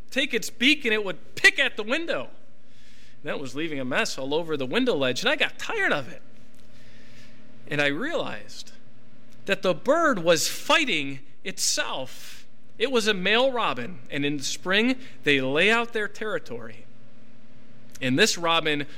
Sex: male